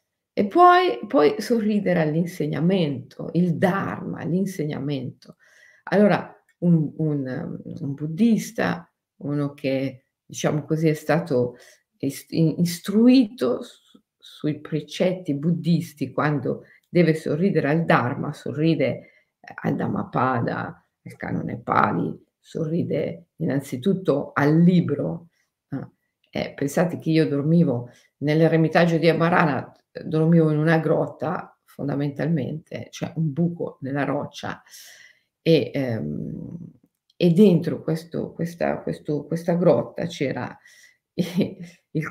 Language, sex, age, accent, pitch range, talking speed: Italian, female, 50-69, native, 150-175 Hz, 100 wpm